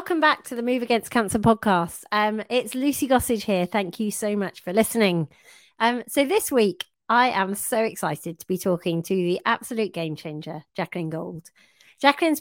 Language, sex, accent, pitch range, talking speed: English, female, British, 165-220 Hz, 185 wpm